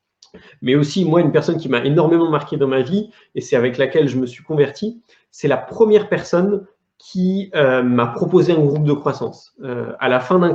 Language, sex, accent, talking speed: French, male, French, 210 wpm